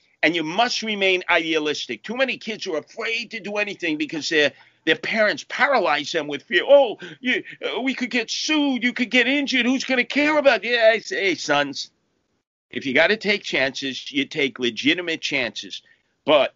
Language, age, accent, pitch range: English, 50-69, American, 160-255 Hz